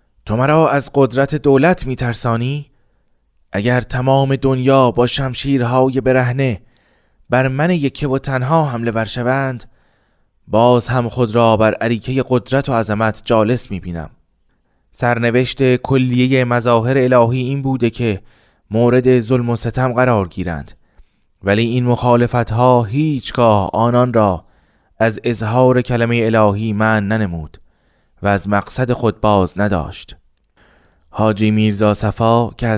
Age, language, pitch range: 20-39, Persian, 100-125 Hz